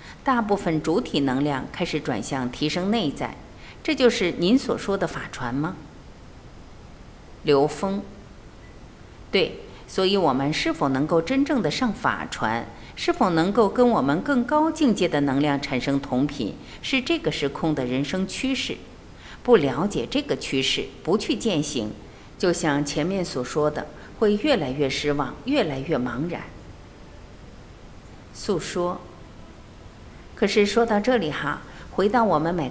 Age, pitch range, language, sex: 50-69, 150-235 Hz, Chinese, female